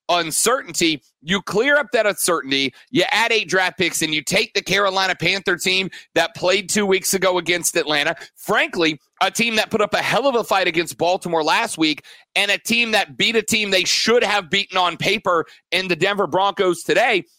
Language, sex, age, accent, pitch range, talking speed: English, male, 40-59, American, 175-215 Hz, 200 wpm